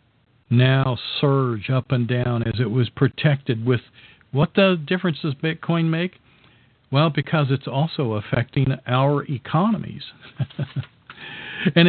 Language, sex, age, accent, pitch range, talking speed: English, male, 50-69, American, 120-160 Hz, 120 wpm